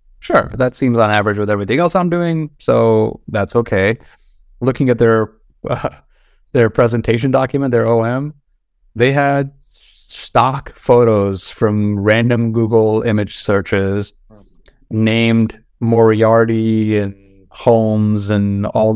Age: 30-49